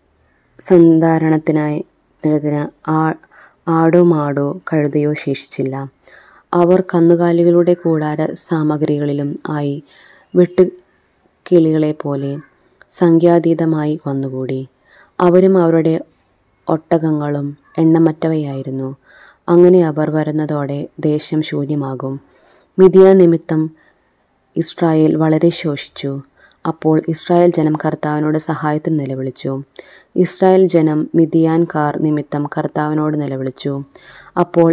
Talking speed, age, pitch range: 75 wpm, 20-39, 145-170 Hz